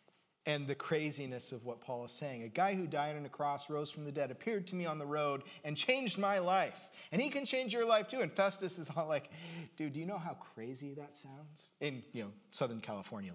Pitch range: 125-180 Hz